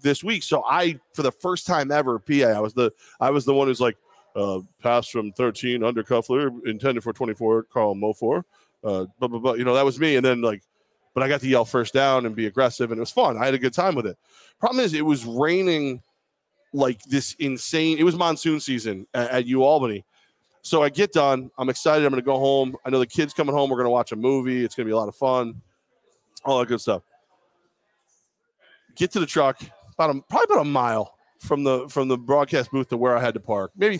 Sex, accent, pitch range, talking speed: male, American, 120-145 Hz, 240 wpm